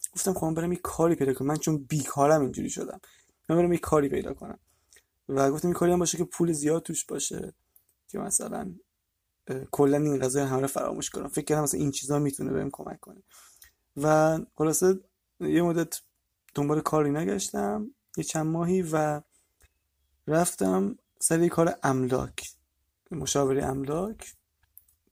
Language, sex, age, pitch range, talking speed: Persian, male, 20-39, 135-165 Hz, 145 wpm